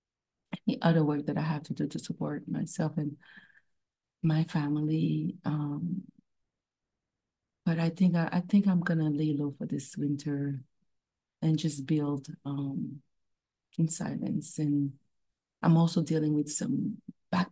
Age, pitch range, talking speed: 30-49, 145-170 Hz, 140 wpm